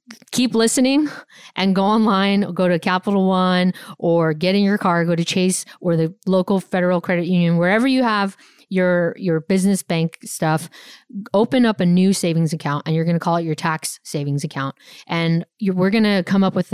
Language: English